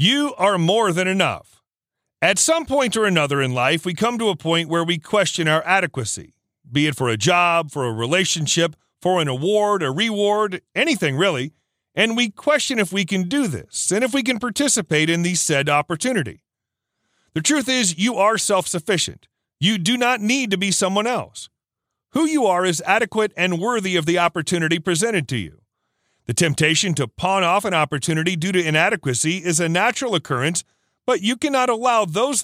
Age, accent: 40-59, American